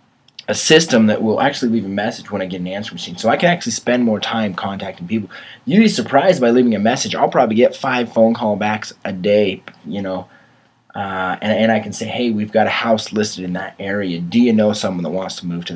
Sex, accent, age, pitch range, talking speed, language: male, American, 20-39, 95-125 Hz, 245 wpm, English